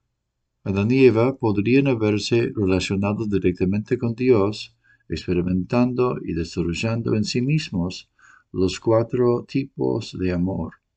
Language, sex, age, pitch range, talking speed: English, male, 60-79, 95-120 Hz, 110 wpm